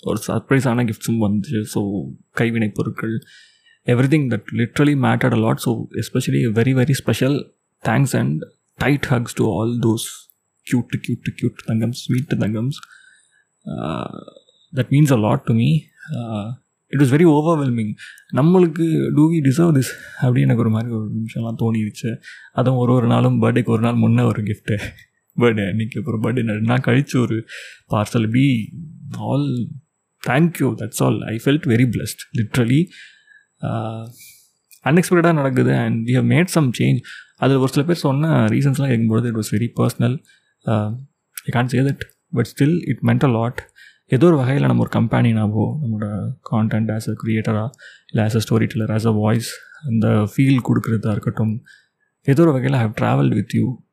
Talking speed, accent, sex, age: 160 wpm, native, male, 20-39